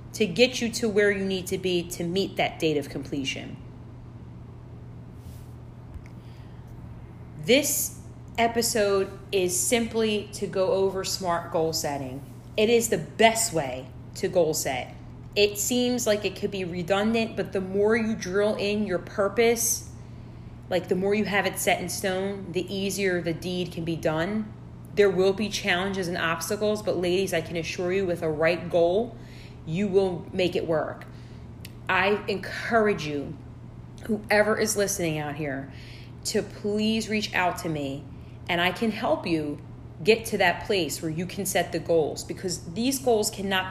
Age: 30-49